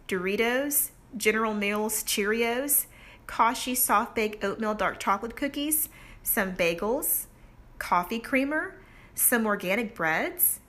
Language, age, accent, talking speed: English, 40-59, American, 95 wpm